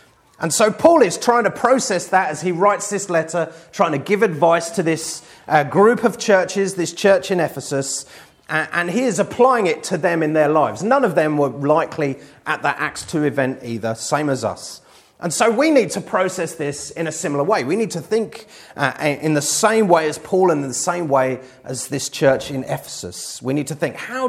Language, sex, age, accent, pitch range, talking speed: English, male, 30-49, British, 140-190 Hz, 220 wpm